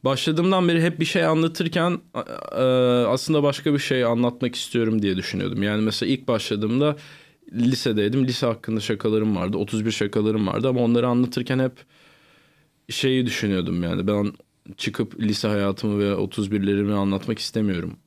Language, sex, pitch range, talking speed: Turkish, male, 105-145 Hz, 135 wpm